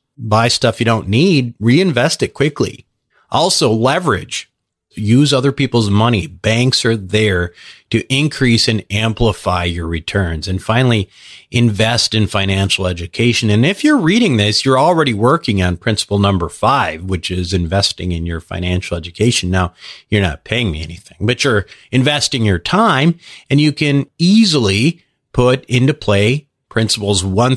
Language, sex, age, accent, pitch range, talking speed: English, male, 40-59, American, 100-140 Hz, 150 wpm